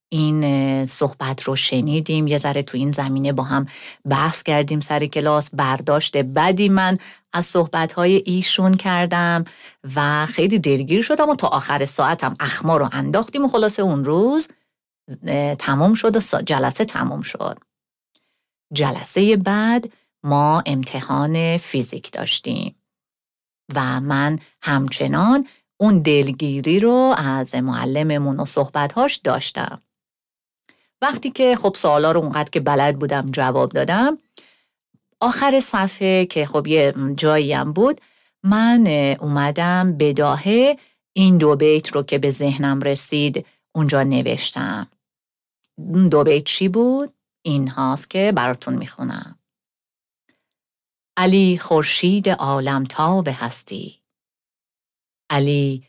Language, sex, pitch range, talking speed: Persian, female, 140-190 Hz, 115 wpm